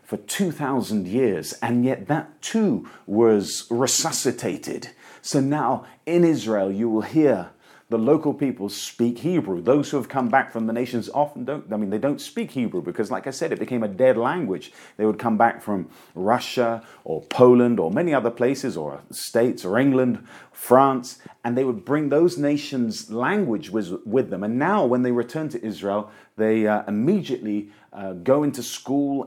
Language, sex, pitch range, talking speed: English, male, 115-145 Hz, 175 wpm